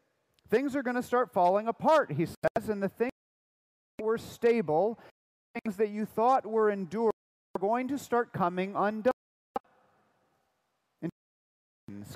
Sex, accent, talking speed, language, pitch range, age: male, American, 140 wpm, English, 165-235 Hz, 40-59